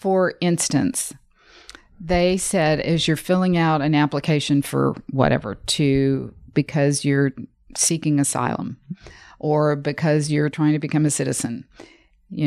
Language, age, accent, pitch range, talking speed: English, 50-69, American, 130-160 Hz, 125 wpm